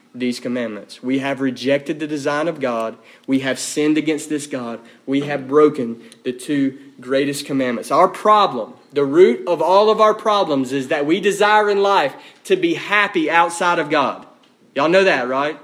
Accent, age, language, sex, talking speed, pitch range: American, 30-49, English, male, 180 wpm, 140-190 Hz